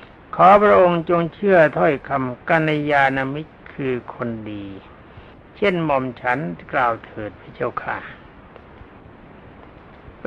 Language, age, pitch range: Thai, 60-79, 125-165 Hz